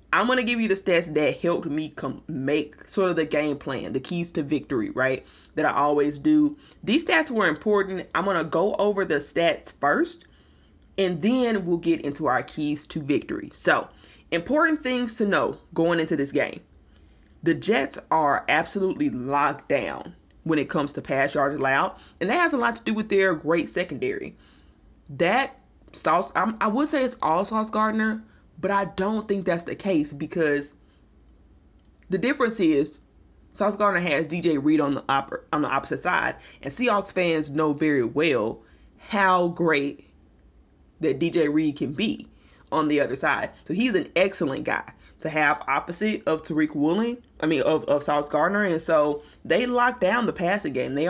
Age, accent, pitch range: 20-39, American, 145-200 Hz